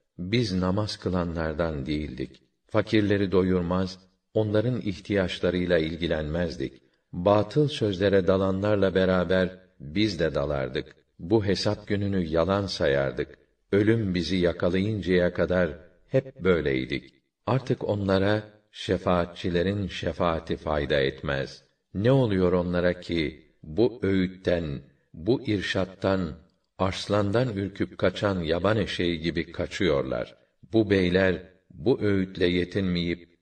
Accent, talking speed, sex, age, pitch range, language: native, 95 wpm, male, 50-69, 85-100 Hz, Turkish